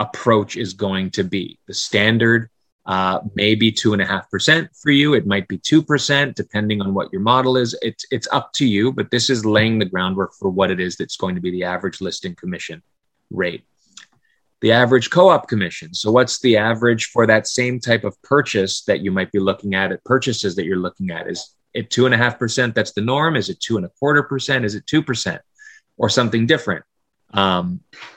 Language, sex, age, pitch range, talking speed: English, male, 30-49, 95-120 Hz, 215 wpm